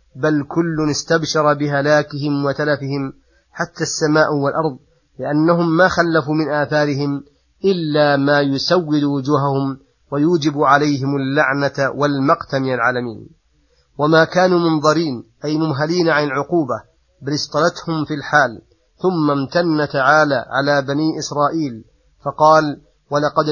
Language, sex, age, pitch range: Arabic, male, 30-49, 140-160 Hz